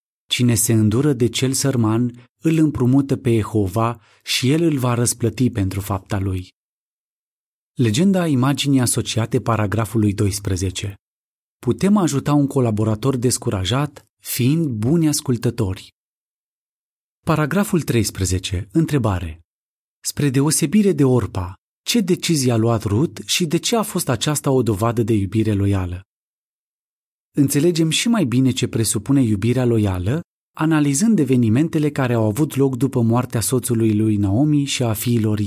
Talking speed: 130 wpm